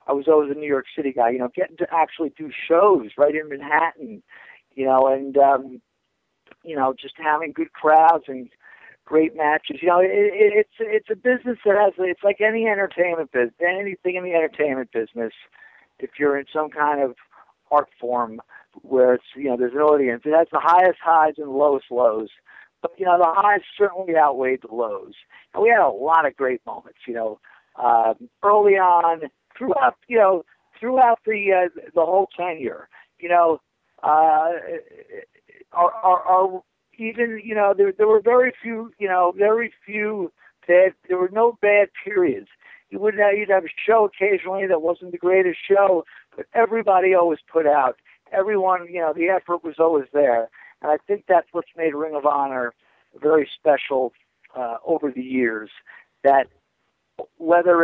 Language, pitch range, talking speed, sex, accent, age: English, 145-205 Hz, 175 wpm, male, American, 50-69